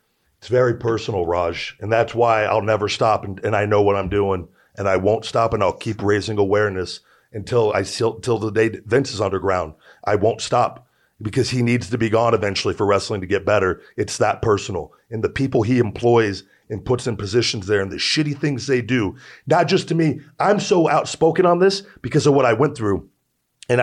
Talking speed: 210 wpm